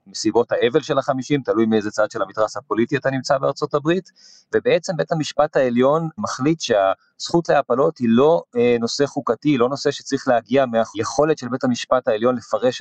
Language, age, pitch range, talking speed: Hebrew, 30-49, 115-150 Hz, 170 wpm